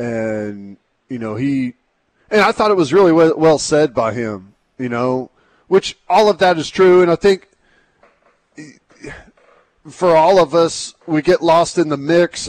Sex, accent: male, American